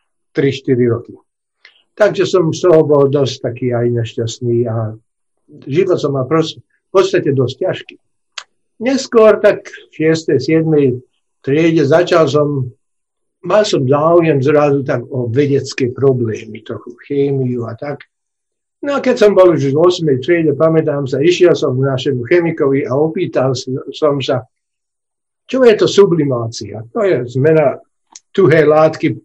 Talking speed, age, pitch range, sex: 135 wpm, 60-79, 135-185 Hz, male